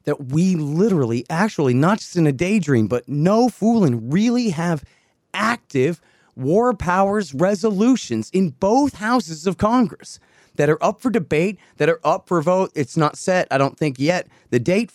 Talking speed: 170 wpm